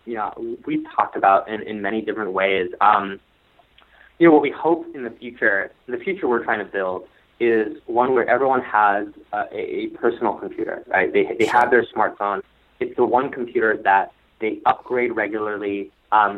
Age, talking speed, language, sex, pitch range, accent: 20-39, 185 wpm, English, male, 105-155 Hz, American